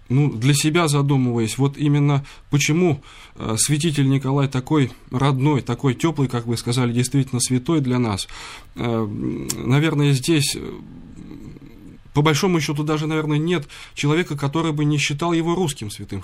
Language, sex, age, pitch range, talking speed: Russian, male, 20-39, 120-150 Hz, 135 wpm